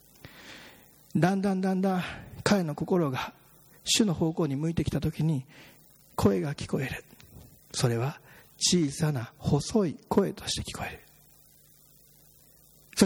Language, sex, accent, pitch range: Japanese, male, native, 150-200 Hz